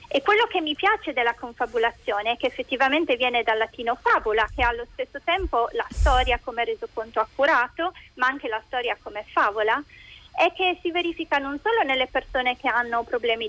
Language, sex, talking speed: Italian, female, 175 wpm